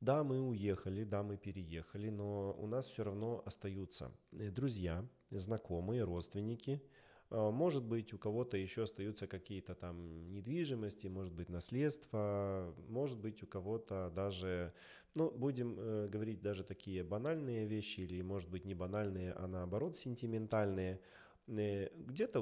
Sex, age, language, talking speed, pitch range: male, 20-39, Russian, 130 wpm, 95-115 Hz